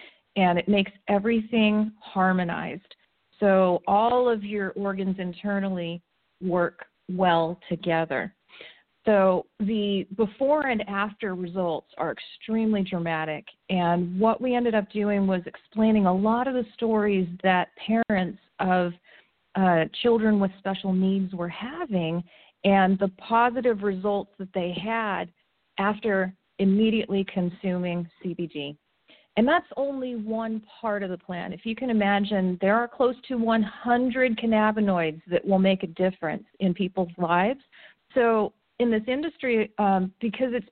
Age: 40-59